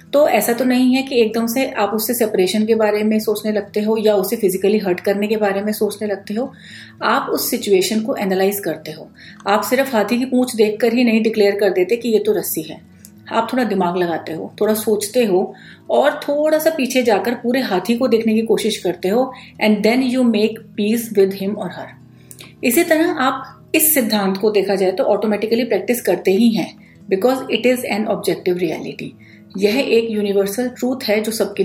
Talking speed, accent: 205 wpm, native